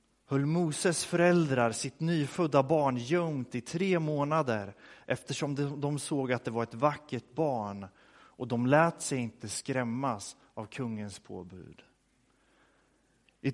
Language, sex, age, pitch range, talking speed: Swedish, male, 30-49, 125-160 Hz, 125 wpm